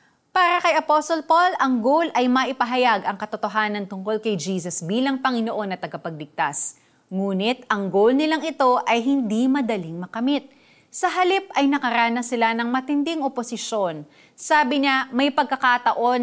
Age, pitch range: 30-49, 195-270 Hz